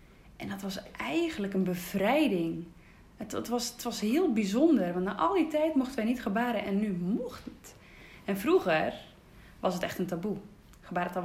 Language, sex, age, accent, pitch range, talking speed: Dutch, female, 20-39, Dutch, 190-245 Hz, 175 wpm